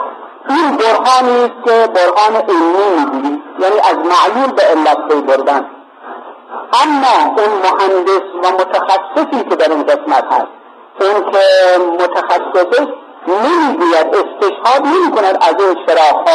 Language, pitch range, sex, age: Persian, 180-250 Hz, male, 50-69